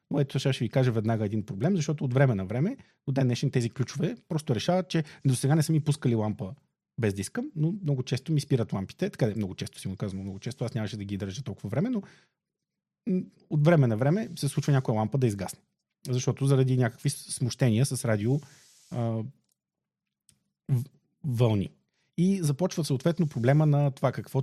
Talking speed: 190 wpm